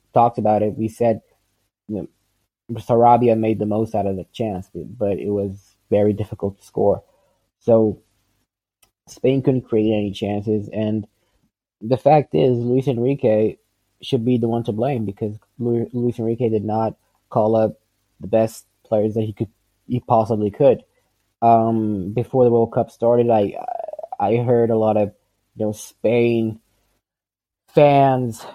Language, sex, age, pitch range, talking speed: English, male, 20-39, 105-120 Hz, 150 wpm